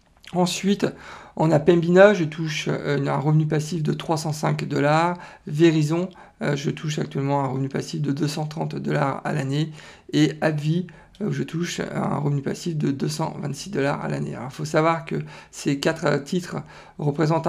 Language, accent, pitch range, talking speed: French, French, 140-165 Hz, 160 wpm